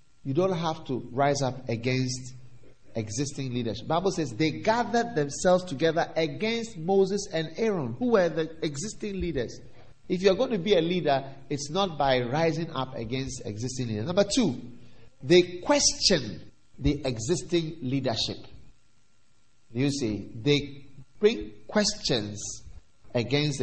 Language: English